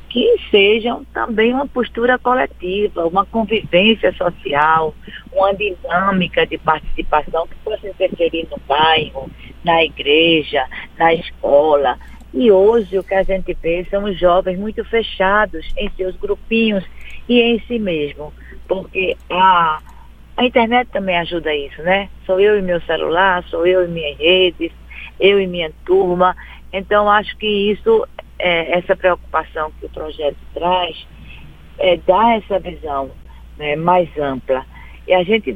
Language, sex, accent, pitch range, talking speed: Portuguese, female, Brazilian, 160-205 Hz, 140 wpm